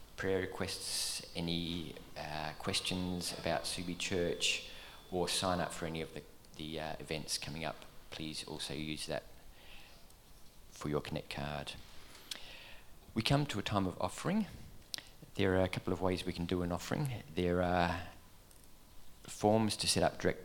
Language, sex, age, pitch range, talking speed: English, male, 40-59, 80-95 Hz, 155 wpm